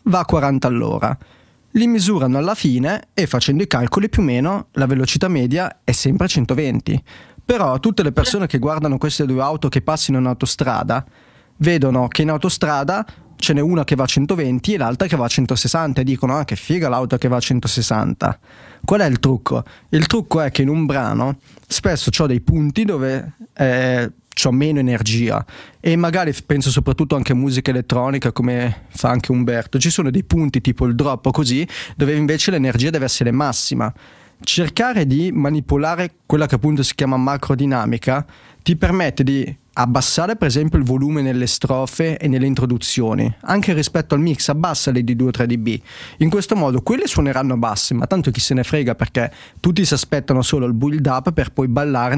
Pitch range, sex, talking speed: 130-160 Hz, male, 185 wpm